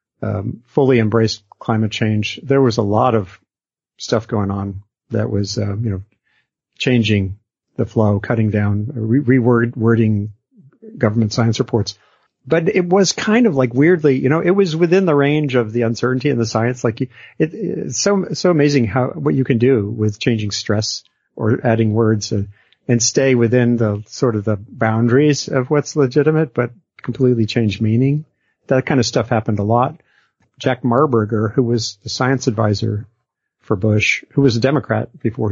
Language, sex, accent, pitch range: English, male, American, 110-140 Hz